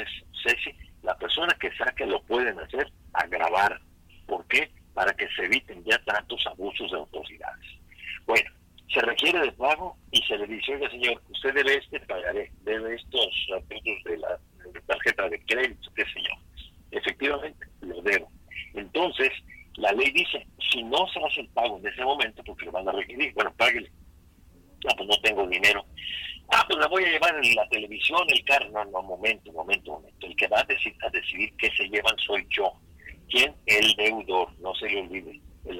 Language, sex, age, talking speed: Spanish, male, 50-69, 180 wpm